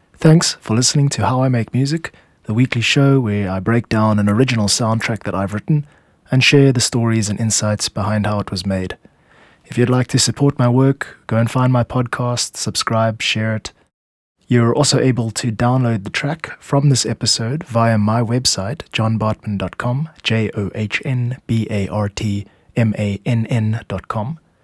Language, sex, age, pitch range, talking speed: English, male, 20-39, 105-125 Hz, 150 wpm